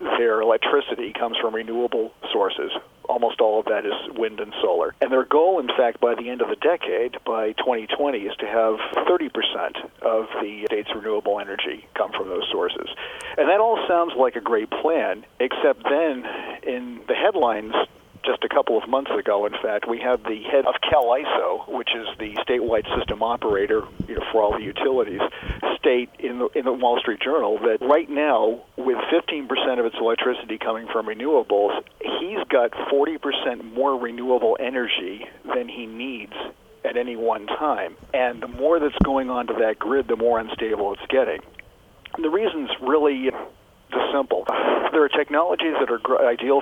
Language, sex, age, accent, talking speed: English, male, 50-69, American, 175 wpm